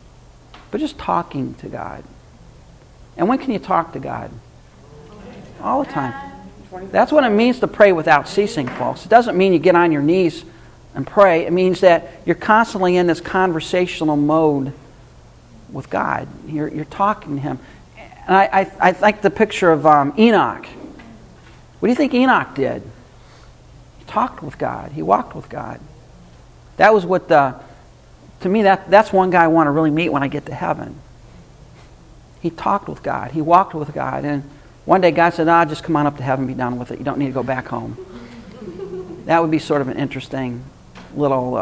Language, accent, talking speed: English, American, 195 wpm